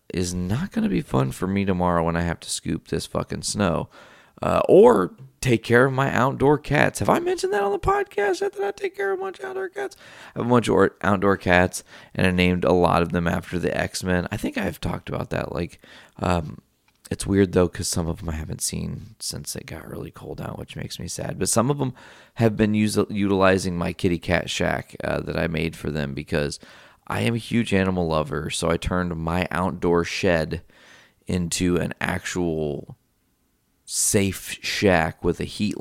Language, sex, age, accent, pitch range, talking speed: English, male, 30-49, American, 80-105 Hz, 210 wpm